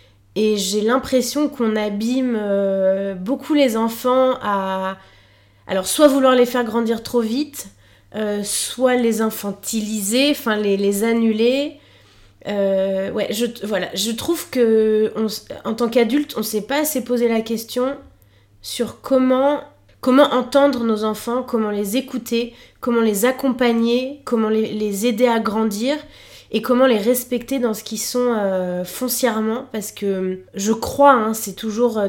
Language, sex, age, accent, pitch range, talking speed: French, female, 20-39, French, 200-245 Hz, 140 wpm